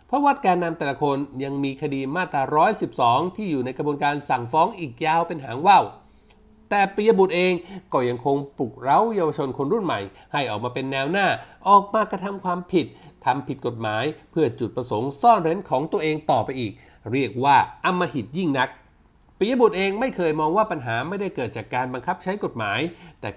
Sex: male